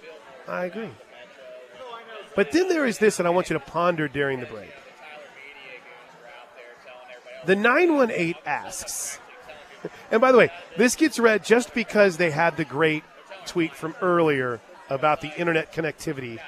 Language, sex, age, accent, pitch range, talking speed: English, male, 30-49, American, 140-195 Hz, 140 wpm